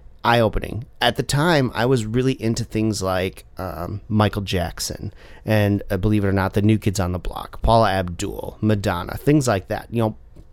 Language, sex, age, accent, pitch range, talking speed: English, male, 30-49, American, 100-115 Hz, 190 wpm